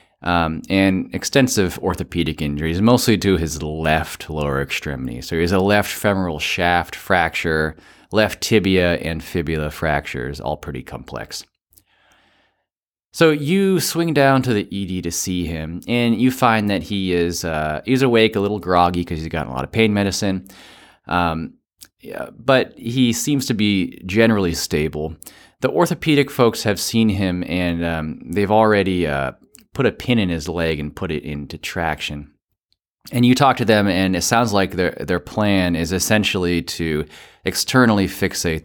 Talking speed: 160 wpm